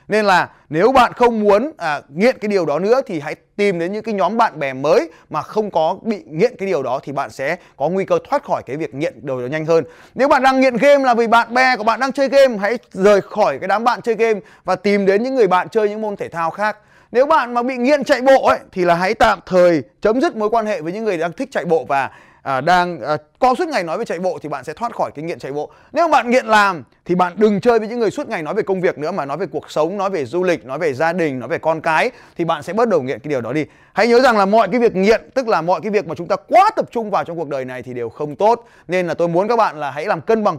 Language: Vietnamese